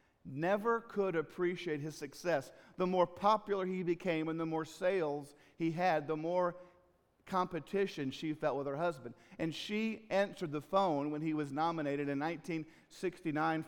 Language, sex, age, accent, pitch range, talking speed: English, male, 50-69, American, 150-195 Hz, 155 wpm